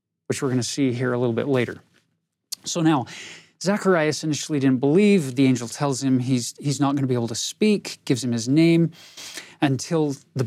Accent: American